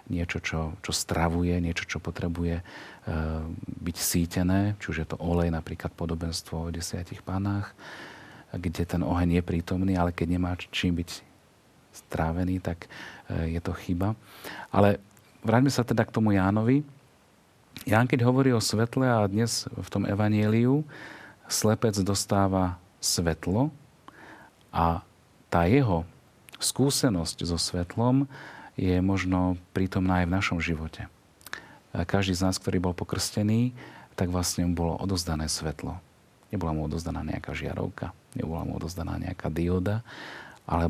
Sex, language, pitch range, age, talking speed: male, Slovak, 85-110 Hz, 40-59, 135 wpm